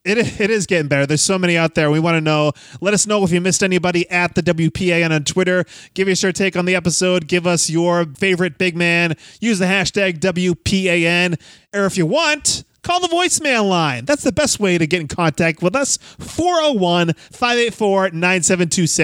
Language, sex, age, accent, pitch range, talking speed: English, male, 30-49, American, 165-210 Hz, 190 wpm